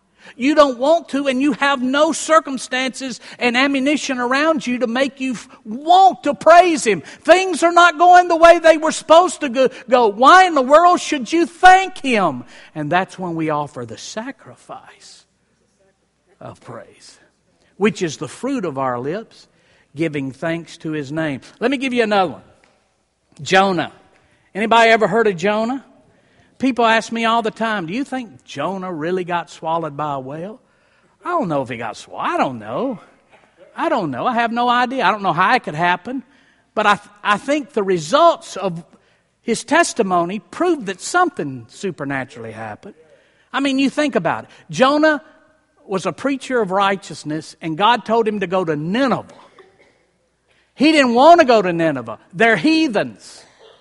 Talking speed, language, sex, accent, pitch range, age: 175 wpm, English, male, American, 185-290 Hz, 50-69